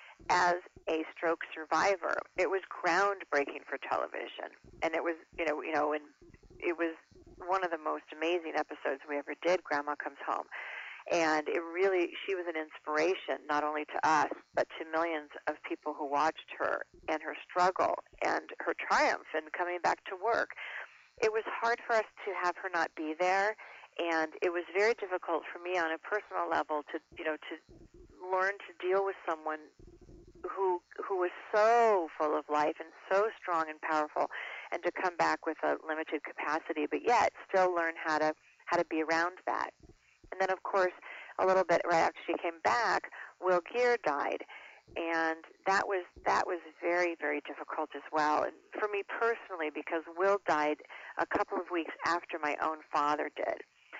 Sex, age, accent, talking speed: female, 40-59, American, 180 wpm